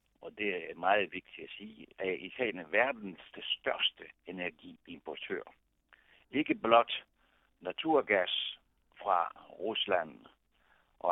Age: 60-79